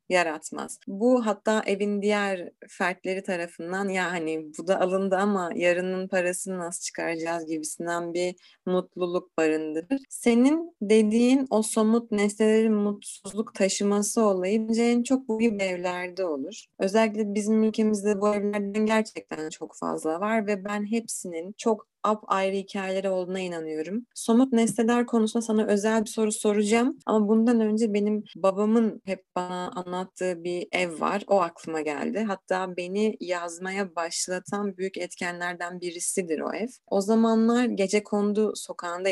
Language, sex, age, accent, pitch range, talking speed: Turkish, female, 30-49, native, 175-220 Hz, 140 wpm